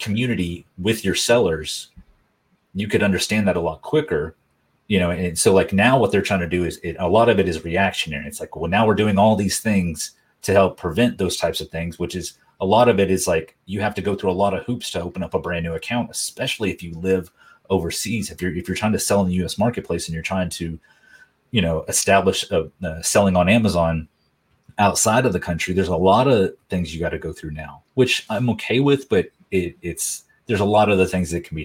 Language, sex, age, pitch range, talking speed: English, male, 30-49, 85-105 Hz, 245 wpm